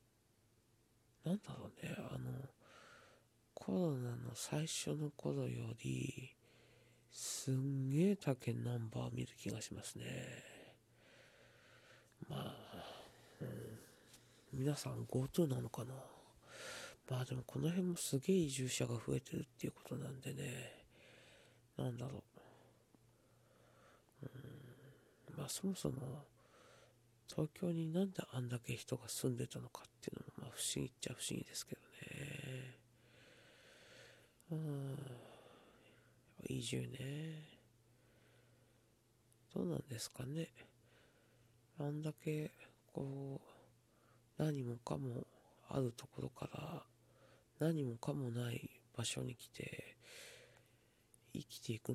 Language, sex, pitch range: Japanese, male, 115-140 Hz